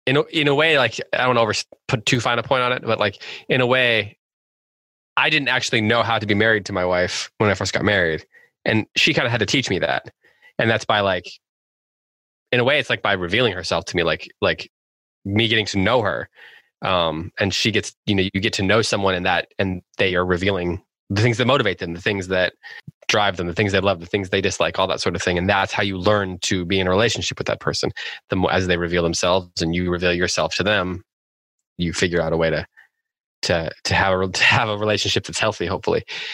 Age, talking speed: 20-39, 245 wpm